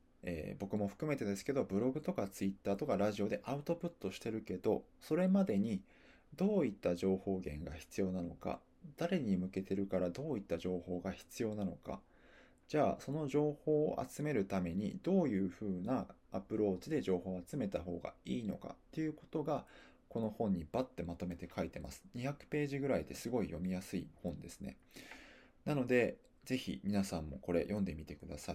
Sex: male